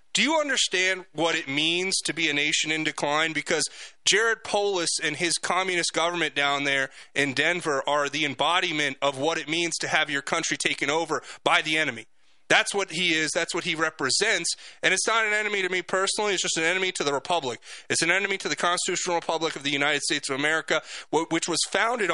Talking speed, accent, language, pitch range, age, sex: 210 wpm, American, English, 150-185 Hz, 30-49, male